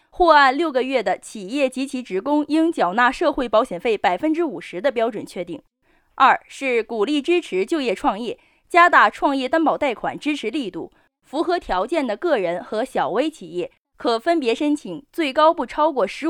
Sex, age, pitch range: female, 20-39, 220-320 Hz